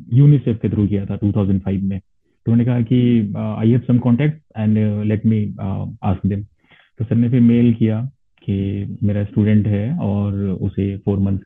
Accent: Indian